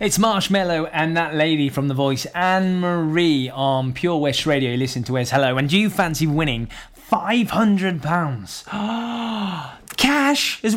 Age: 20-39